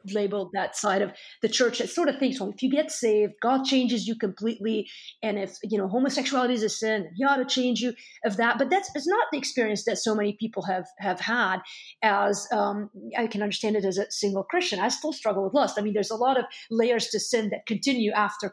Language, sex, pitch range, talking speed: English, female, 210-265 Hz, 240 wpm